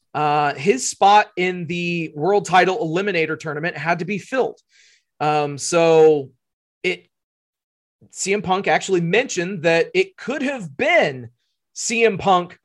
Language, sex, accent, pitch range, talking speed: English, male, American, 155-195 Hz, 130 wpm